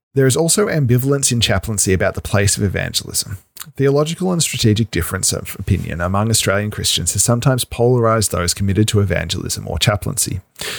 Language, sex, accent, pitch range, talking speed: English, male, Australian, 100-125 Hz, 160 wpm